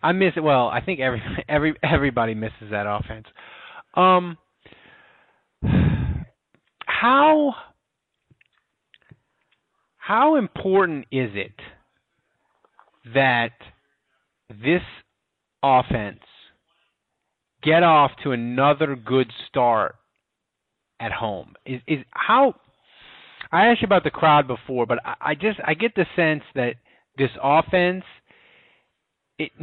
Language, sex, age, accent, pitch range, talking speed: English, male, 30-49, American, 125-180 Hz, 105 wpm